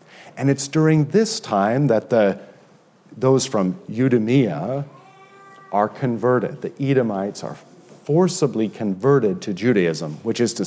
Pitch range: 115-175 Hz